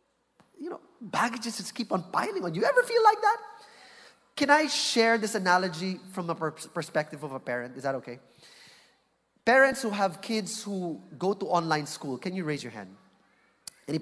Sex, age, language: male, 20-39, English